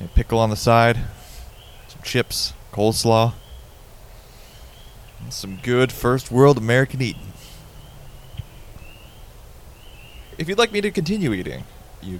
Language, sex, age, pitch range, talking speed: English, male, 20-39, 90-115 Hz, 110 wpm